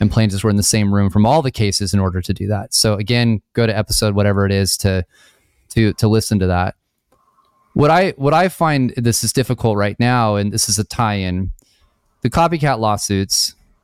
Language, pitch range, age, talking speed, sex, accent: English, 100-120 Hz, 30-49, 210 wpm, male, American